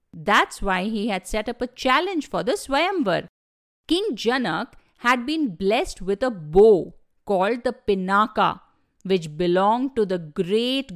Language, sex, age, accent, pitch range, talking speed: English, female, 50-69, Indian, 205-290 Hz, 150 wpm